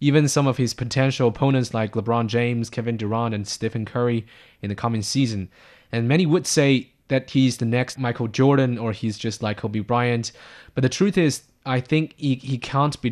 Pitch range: 110-135 Hz